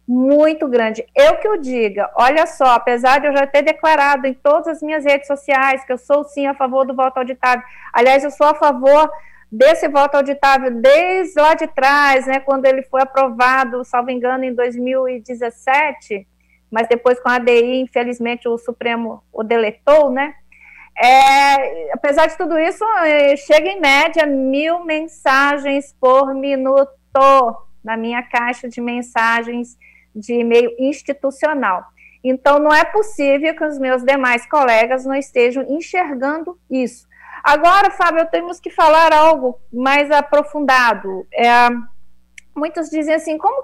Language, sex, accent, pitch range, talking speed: Portuguese, female, Brazilian, 250-310 Hz, 145 wpm